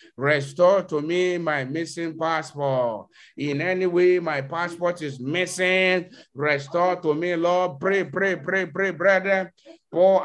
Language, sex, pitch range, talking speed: English, male, 145-190 Hz, 135 wpm